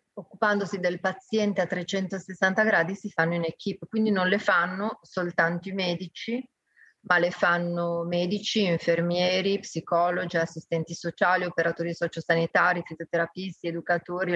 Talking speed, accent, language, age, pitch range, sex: 120 wpm, native, Italian, 30-49, 170-195 Hz, female